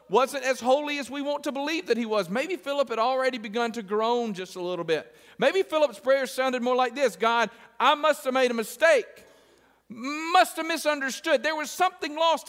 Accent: American